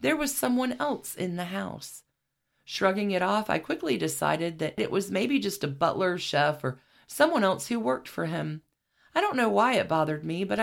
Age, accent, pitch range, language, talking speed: 40-59, American, 150-220 Hz, English, 205 wpm